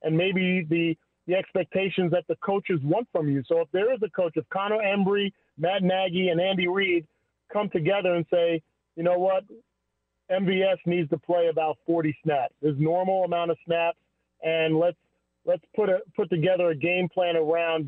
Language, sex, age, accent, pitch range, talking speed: English, male, 40-59, American, 165-205 Hz, 185 wpm